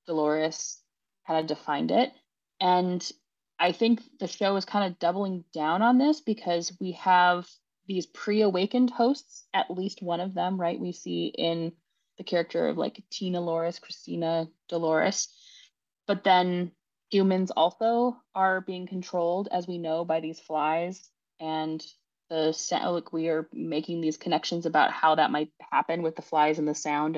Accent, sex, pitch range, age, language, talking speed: American, female, 165-195 Hz, 20-39, English, 160 wpm